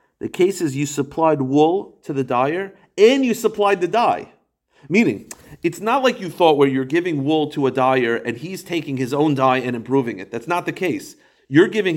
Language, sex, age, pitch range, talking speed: English, male, 40-59, 130-200 Hz, 210 wpm